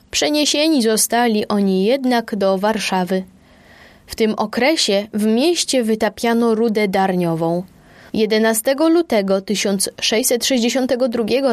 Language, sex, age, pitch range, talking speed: Polish, female, 20-39, 200-250 Hz, 90 wpm